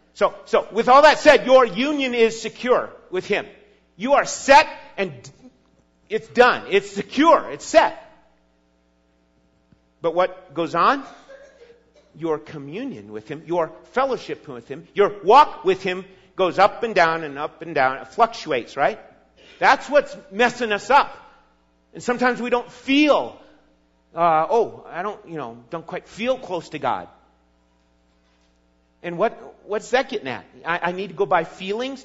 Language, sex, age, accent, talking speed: English, male, 50-69, American, 155 wpm